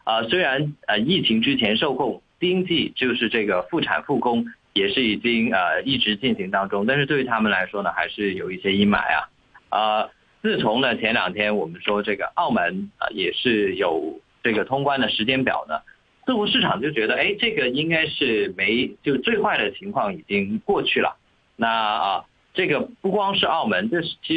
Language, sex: Chinese, male